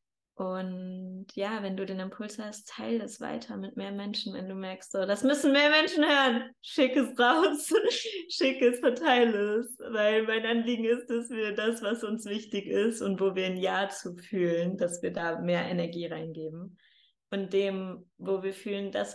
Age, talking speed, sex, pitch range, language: 20-39, 185 wpm, female, 185-240 Hz, German